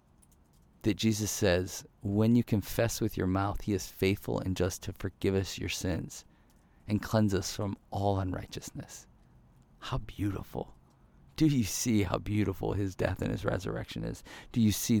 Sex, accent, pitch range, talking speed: male, American, 95-115 Hz, 165 wpm